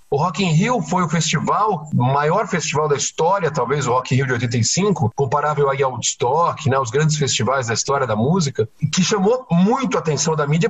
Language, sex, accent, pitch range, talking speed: Portuguese, male, Brazilian, 140-190 Hz, 210 wpm